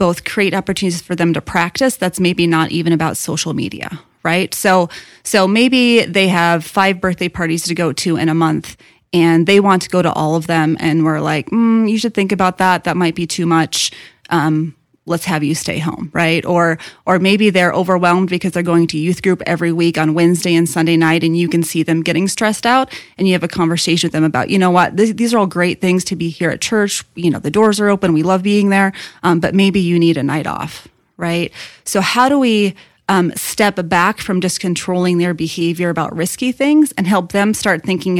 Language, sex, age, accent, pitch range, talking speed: English, female, 30-49, American, 165-195 Hz, 230 wpm